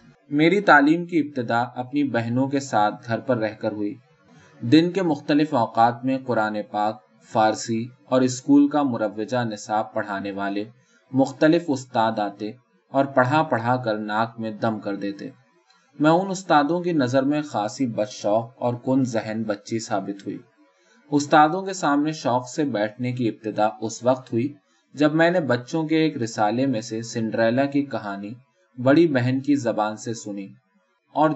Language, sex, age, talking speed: Urdu, male, 20-39, 165 wpm